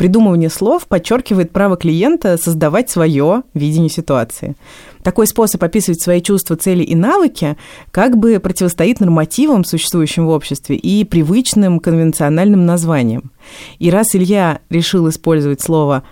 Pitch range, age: 150-195 Hz, 30-49